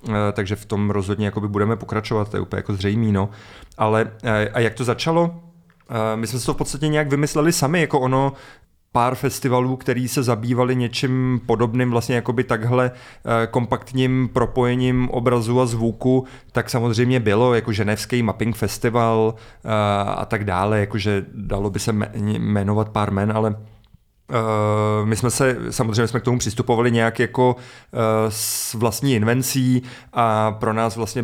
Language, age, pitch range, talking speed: Czech, 30-49, 110-125 Hz, 150 wpm